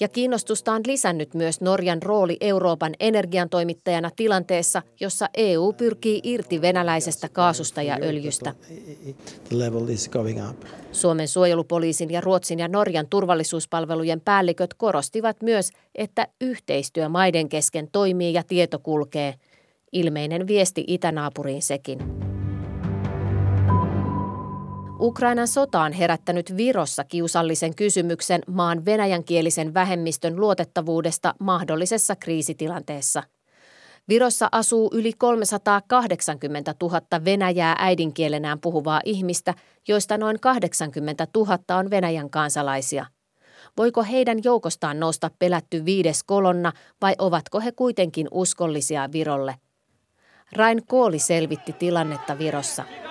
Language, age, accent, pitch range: Finnish, 30-49, native, 155-200 Hz